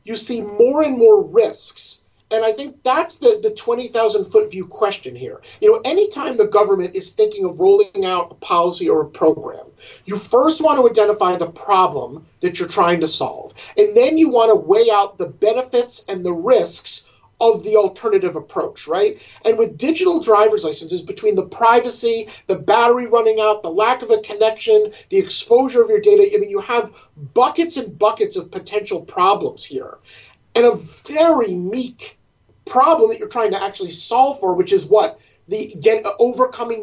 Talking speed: 180 wpm